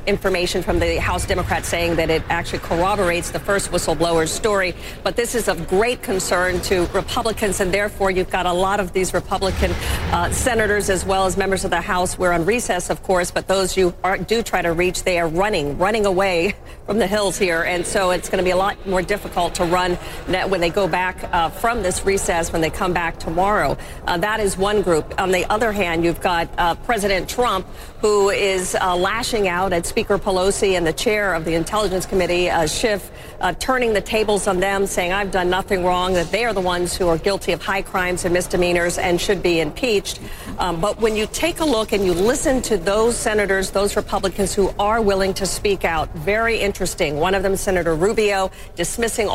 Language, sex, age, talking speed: English, female, 50-69, 210 wpm